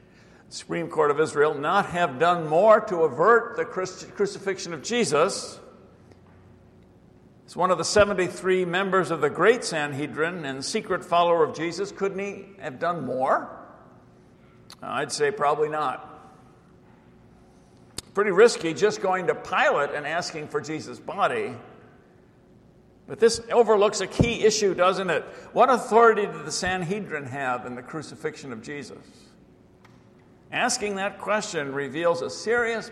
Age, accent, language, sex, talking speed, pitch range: 60-79, American, English, male, 135 wpm, 160-215 Hz